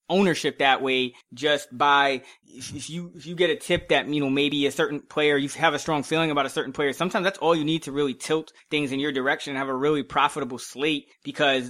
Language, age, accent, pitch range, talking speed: English, 20-39, American, 135-155 Hz, 240 wpm